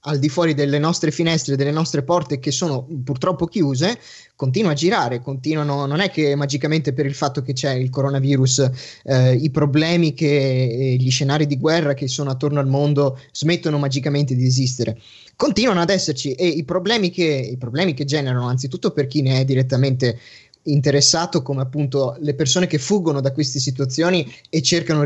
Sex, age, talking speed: male, 20-39, 175 wpm